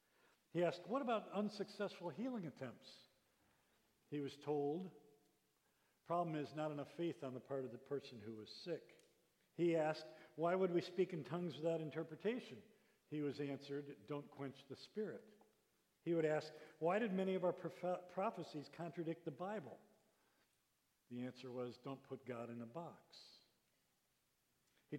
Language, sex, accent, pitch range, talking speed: English, male, American, 140-170 Hz, 150 wpm